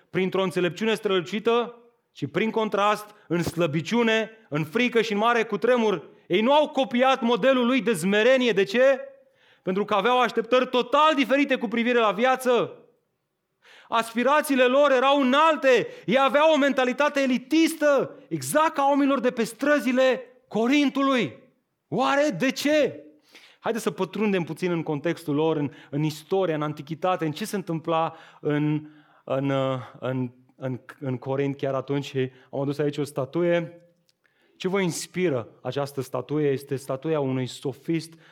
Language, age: Romanian, 30-49